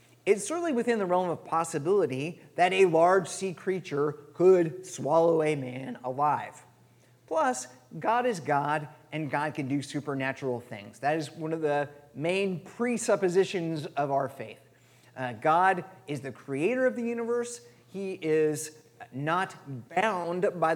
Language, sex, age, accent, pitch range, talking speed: English, male, 30-49, American, 130-185 Hz, 145 wpm